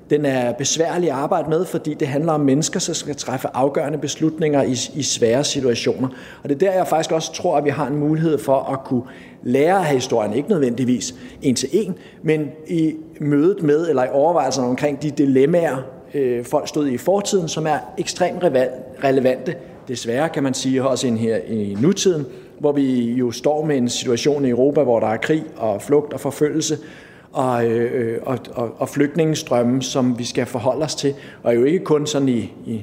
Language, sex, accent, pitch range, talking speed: Danish, male, native, 125-155 Hz, 195 wpm